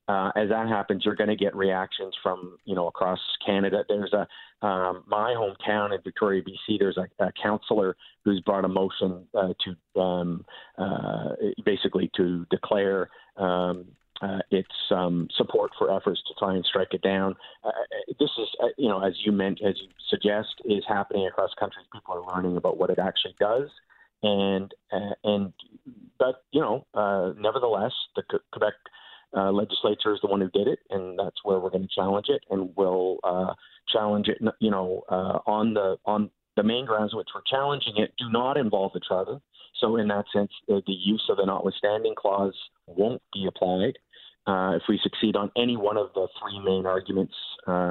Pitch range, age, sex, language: 95-105 Hz, 40-59, male, English